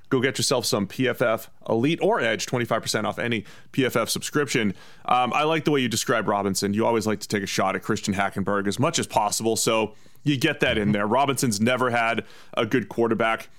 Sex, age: male, 30-49